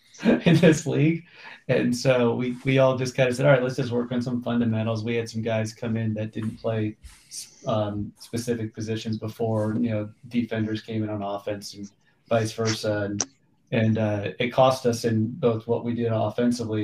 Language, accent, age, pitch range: English, American, 30-49, 110-120 Hz